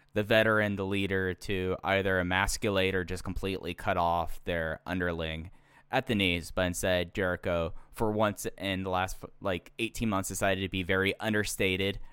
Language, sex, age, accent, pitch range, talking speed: English, male, 10-29, American, 90-115 Hz, 165 wpm